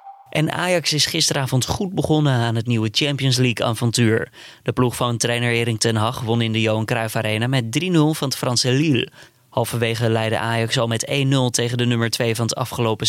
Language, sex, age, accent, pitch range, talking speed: Dutch, male, 20-39, Dutch, 115-145 Hz, 195 wpm